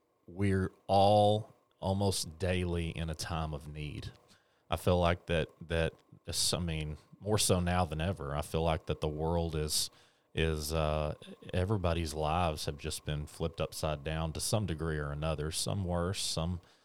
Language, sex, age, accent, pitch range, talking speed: English, male, 30-49, American, 80-95 Hz, 165 wpm